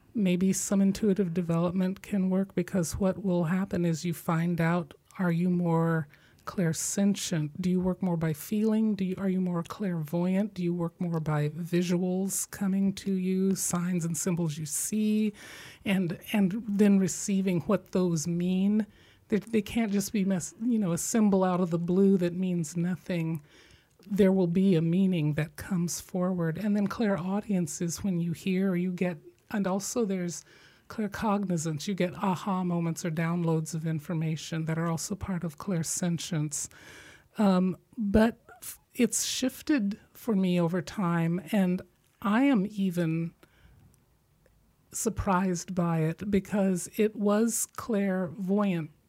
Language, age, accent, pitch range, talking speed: English, 40-59, American, 170-200 Hz, 150 wpm